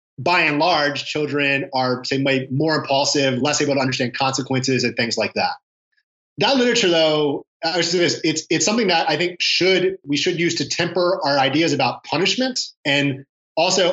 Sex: male